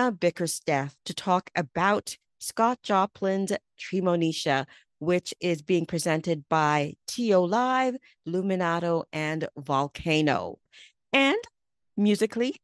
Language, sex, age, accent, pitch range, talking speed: English, female, 40-59, American, 155-195 Hz, 90 wpm